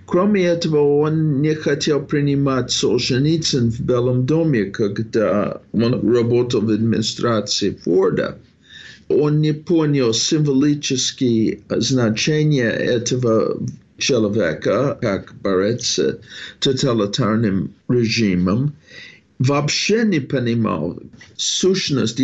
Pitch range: 115-155 Hz